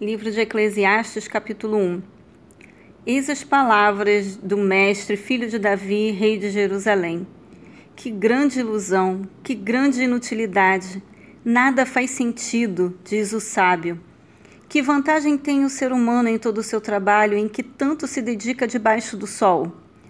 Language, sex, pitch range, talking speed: Portuguese, female, 205-245 Hz, 140 wpm